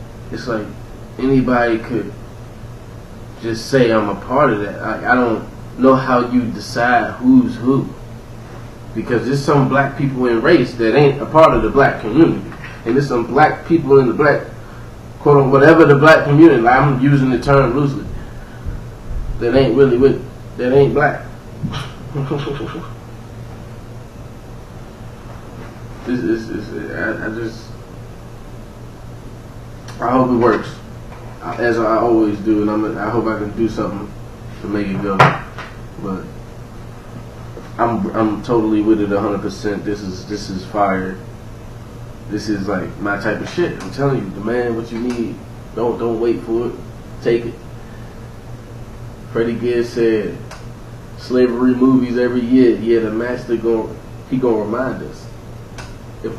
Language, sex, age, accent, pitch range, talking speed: English, male, 20-39, American, 115-125 Hz, 145 wpm